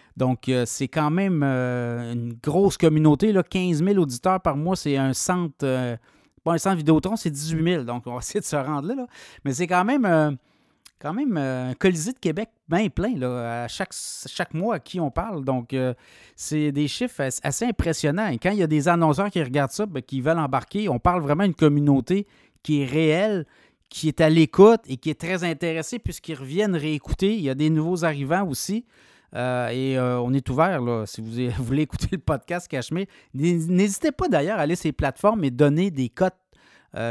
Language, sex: French, male